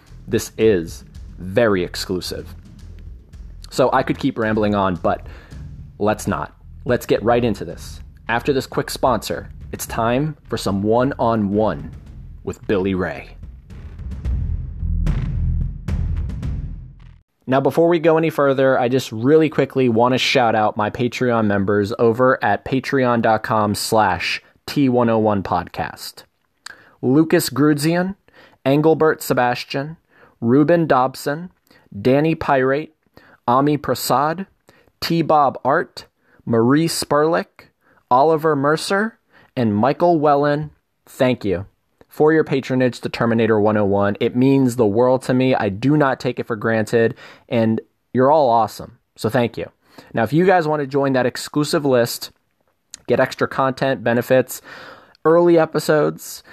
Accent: American